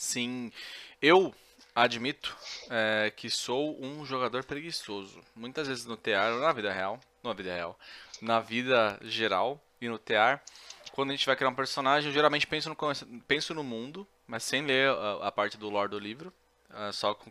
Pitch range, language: 110-145 Hz, Portuguese